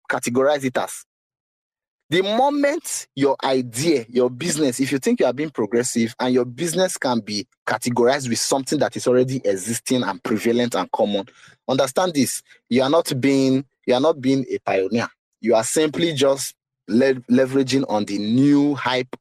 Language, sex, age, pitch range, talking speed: English, male, 30-49, 120-155 Hz, 165 wpm